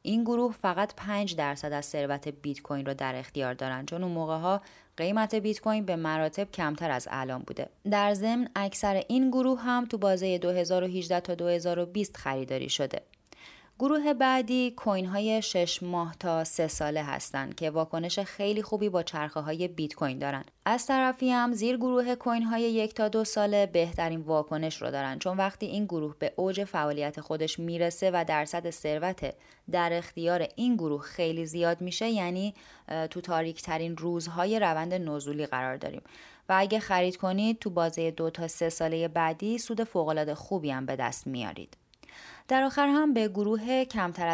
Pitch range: 160-220 Hz